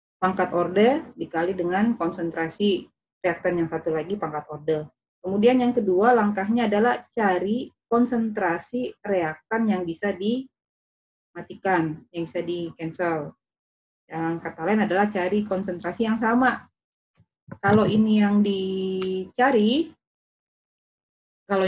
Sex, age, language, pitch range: female, 30-49, Indonesian, 175-235 Hz